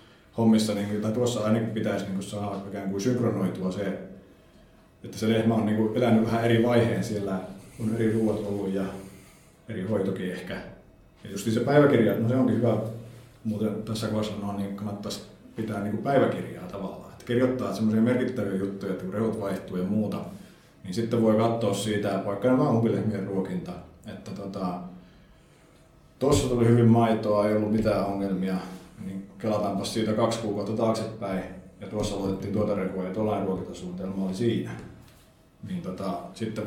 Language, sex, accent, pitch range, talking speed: Finnish, male, native, 100-115 Hz, 145 wpm